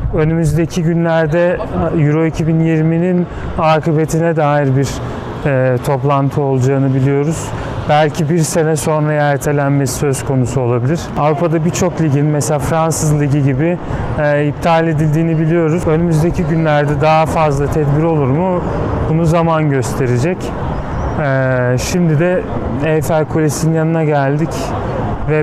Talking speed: 115 wpm